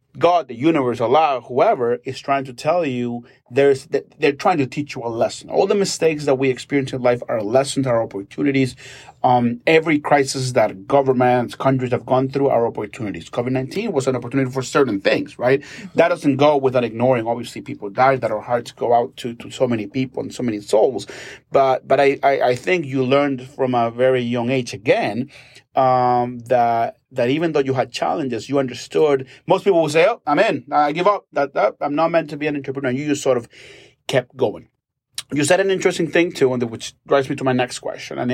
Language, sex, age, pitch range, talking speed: English, male, 30-49, 125-150 Hz, 210 wpm